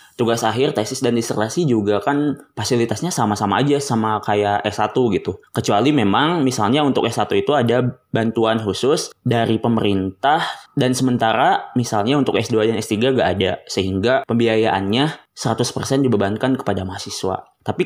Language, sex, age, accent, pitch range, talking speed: Indonesian, male, 20-39, native, 105-130 Hz, 140 wpm